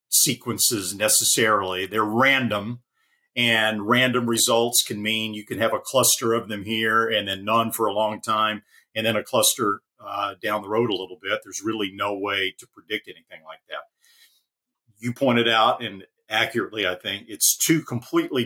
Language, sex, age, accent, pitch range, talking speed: English, male, 50-69, American, 105-125 Hz, 175 wpm